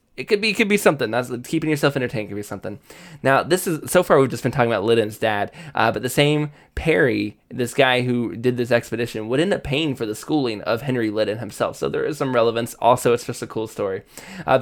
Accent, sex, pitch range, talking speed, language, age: American, male, 115-135 Hz, 245 wpm, English, 20-39